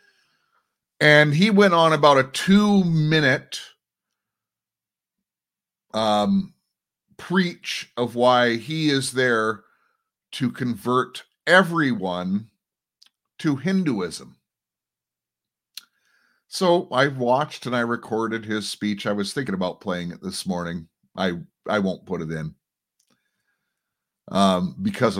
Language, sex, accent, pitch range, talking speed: English, male, American, 105-155 Hz, 100 wpm